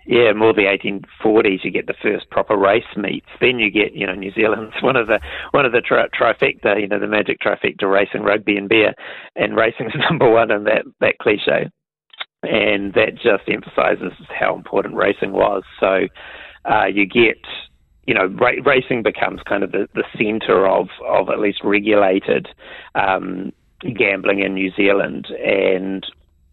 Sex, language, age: male, English, 30-49